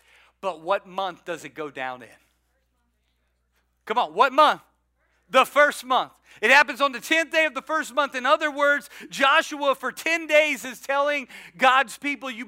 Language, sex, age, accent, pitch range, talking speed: English, male, 40-59, American, 235-305 Hz, 180 wpm